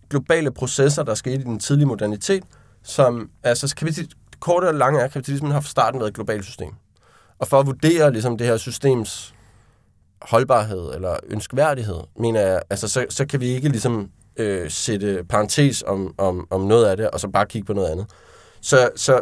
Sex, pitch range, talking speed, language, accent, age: male, 105-140 Hz, 195 wpm, Danish, native, 20-39